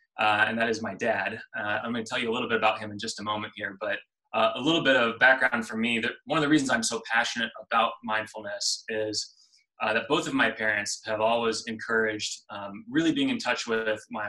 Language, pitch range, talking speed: English, 110-125 Hz, 240 wpm